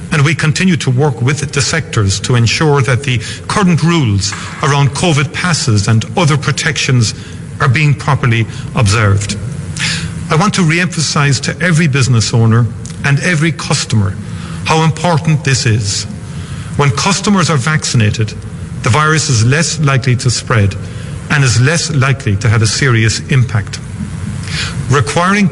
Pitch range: 115-155 Hz